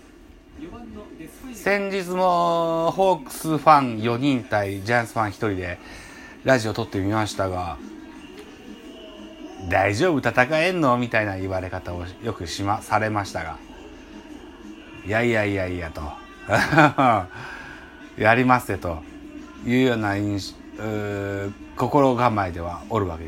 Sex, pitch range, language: male, 100-170 Hz, Japanese